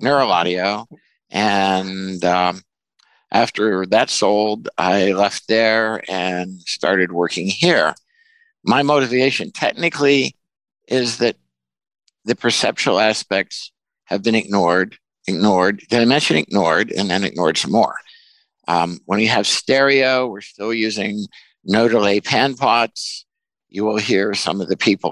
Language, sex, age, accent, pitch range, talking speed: English, male, 60-79, American, 95-135 Hz, 130 wpm